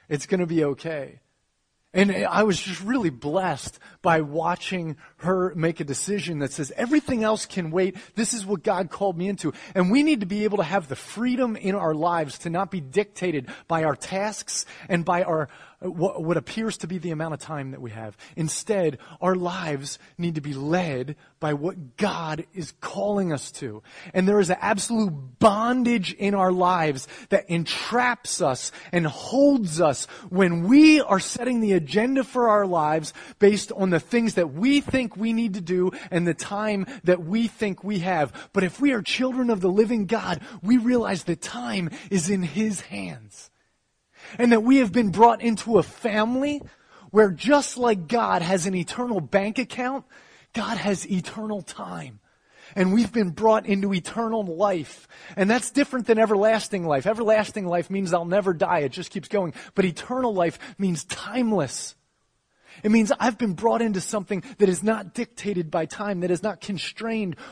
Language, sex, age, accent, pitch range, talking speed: English, male, 30-49, American, 170-220 Hz, 180 wpm